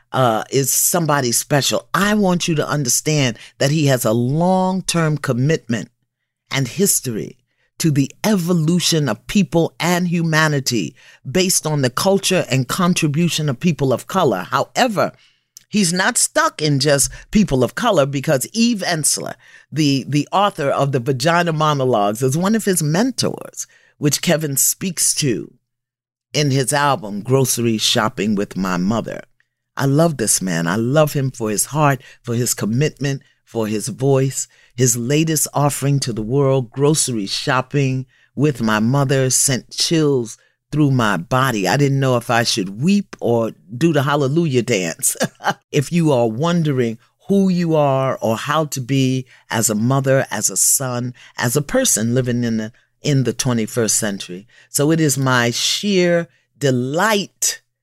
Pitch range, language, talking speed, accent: 120-160 Hz, English, 150 wpm, American